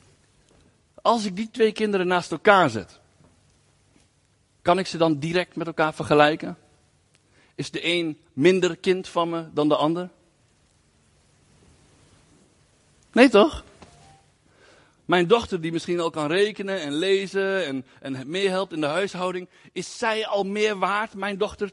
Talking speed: 140 wpm